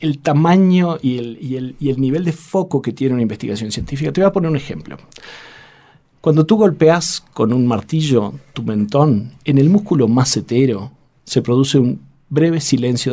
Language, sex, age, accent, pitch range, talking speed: Spanish, male, 40-59, Argentinian, 115-160 Hz, 180 wpm